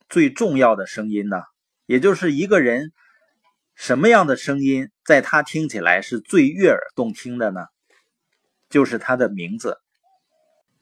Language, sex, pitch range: Chinese, male, 135-220 Hz